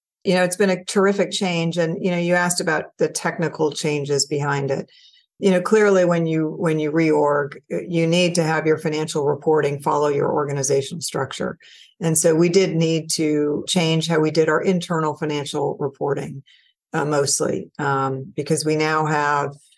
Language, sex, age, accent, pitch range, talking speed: English, female, 50-69, American, 150-180 Hz, 175 wpm